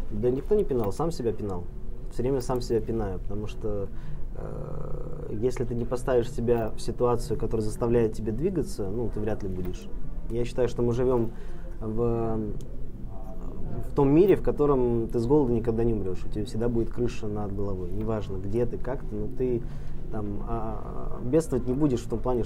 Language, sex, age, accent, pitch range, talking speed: Russian, male, 20-39, native, 105-125 Hz, 190 wpm